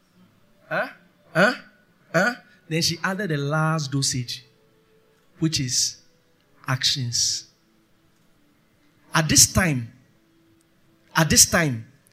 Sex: male